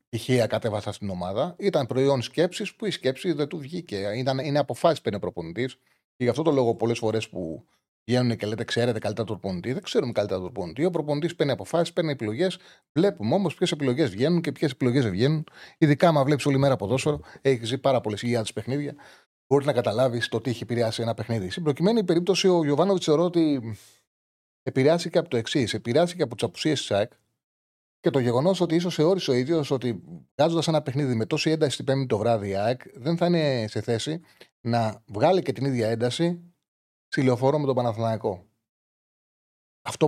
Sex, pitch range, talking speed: male, 115-155 Hz, 185 wpm